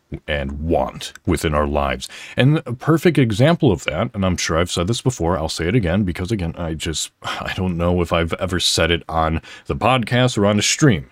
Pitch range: 80-115 Hz